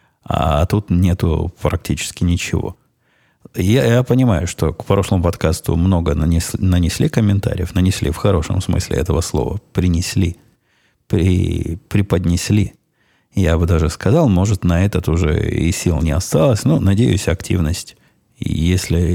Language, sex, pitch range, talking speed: Russian, male, 85-100 Hz, 120 wpm